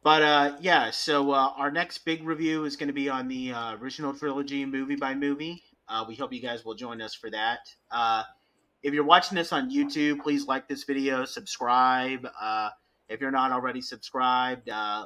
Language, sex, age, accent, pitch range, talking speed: English, male, 30-49, American, 115-140 Hz, 200 wpm